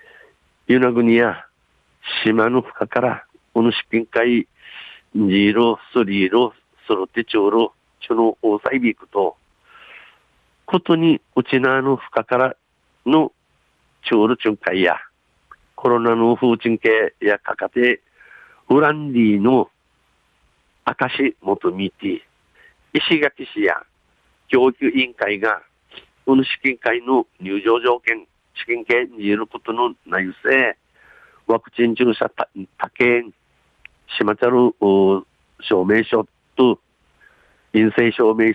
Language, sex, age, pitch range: Japanese, male, 50-69, 110-130 Hz